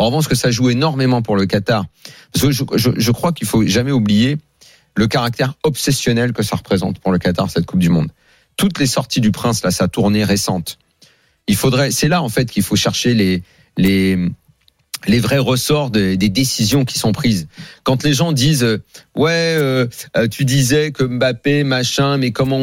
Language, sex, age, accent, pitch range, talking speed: French, male, 40-59, French, 100-130 Hz, 200 wpm